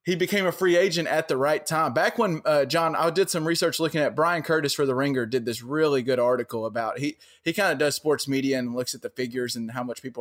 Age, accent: 20-39, American